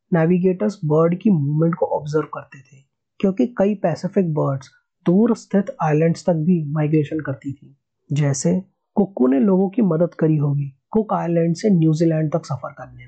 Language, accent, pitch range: Hindi, native, 145-190 Hz